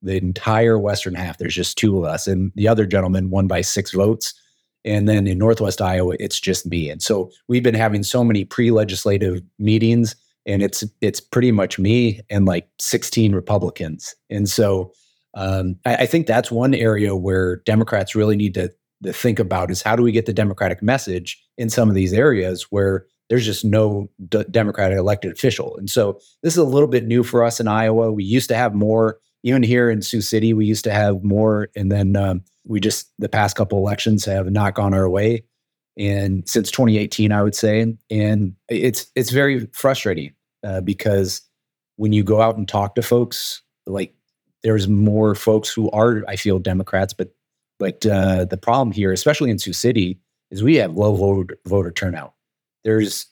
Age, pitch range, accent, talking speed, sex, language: 30-49, 95-115 Hz, American, 190 wpm, male, English